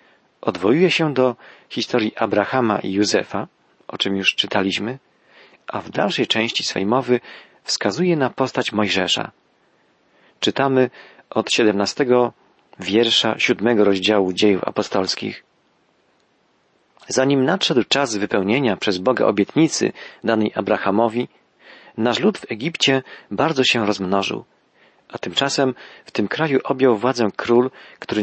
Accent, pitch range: native, 110-135 Hz